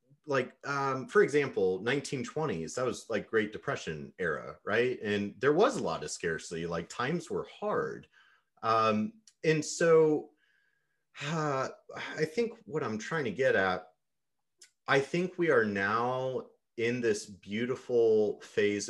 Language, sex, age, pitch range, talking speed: English, male, 30-49, 95-150 Hz, 140 wpm